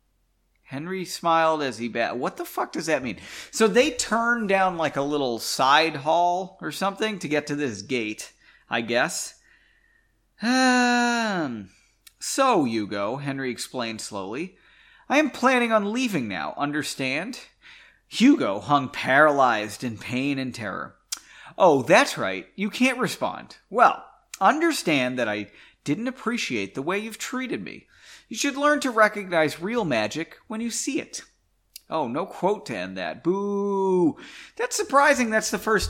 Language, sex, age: English, male, 30-49